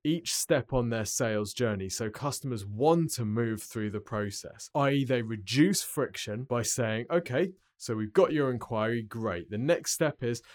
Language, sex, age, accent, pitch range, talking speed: English, male, 20-39, British, 110-145 Hz, 175 wpm